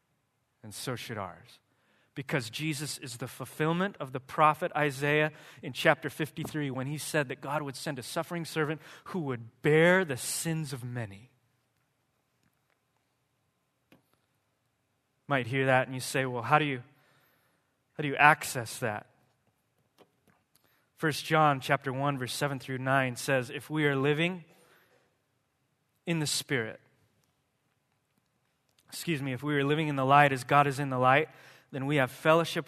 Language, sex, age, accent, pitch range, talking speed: English, male, 20-39, American, 130-150 Hz, 155 wpm